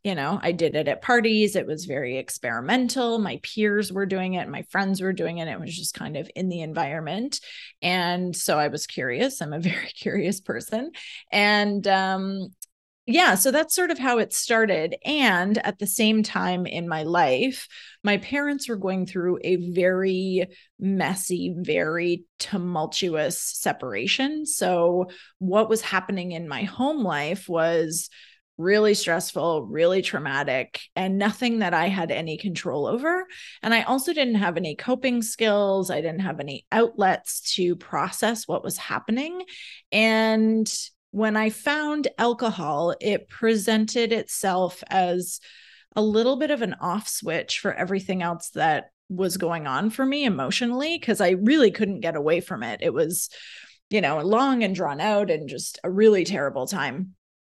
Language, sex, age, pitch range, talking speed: English, female, 30-49, 175-225 Hz, 165 wpm